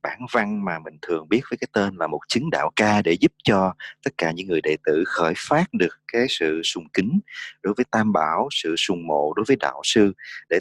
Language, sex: English, male